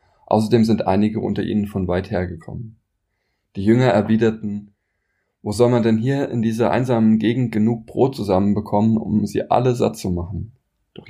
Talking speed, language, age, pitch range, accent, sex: 160 wpm, German, 20-39, 95-115 Hz, German, male